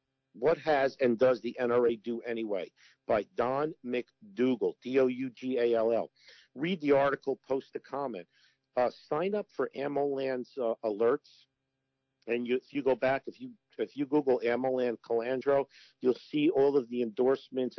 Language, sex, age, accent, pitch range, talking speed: English, male, 50-69, American, 115-135 Hz, 150 wpm